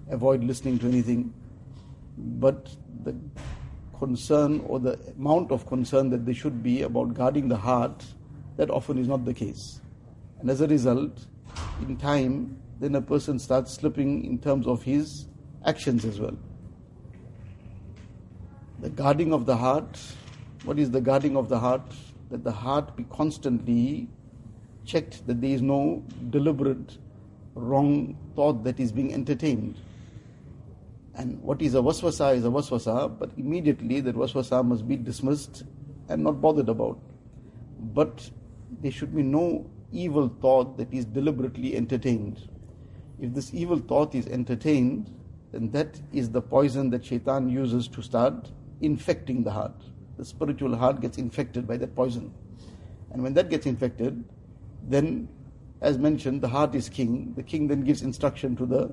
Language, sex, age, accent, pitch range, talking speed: English, male, 60-79, Indian, 120-140 Hz, 150 wpm